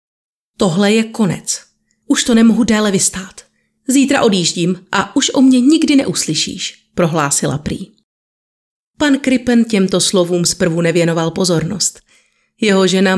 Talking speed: 125 wpm